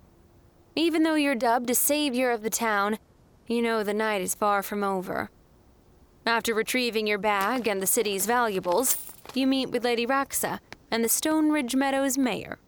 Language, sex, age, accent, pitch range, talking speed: English, female, 20-39, American, 205-255 Hz, 170 wpm